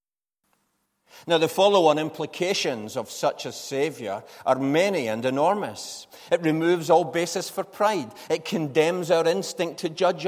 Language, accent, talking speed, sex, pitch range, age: English, British, 140 wpm, male, 155-195 Hz, 40-59